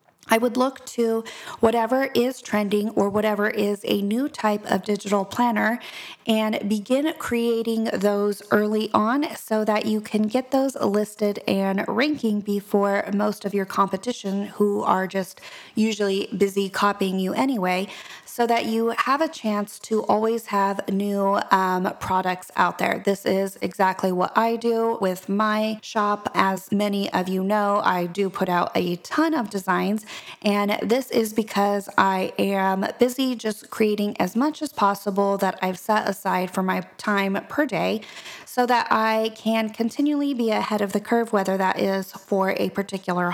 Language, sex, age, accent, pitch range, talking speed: English, female, 30-49, American, 195-230 Hz, 165 wpm